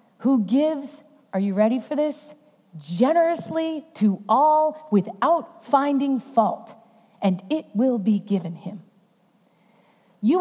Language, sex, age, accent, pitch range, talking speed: English, female, 30-49, American, 225-310 Hz, 115 wpm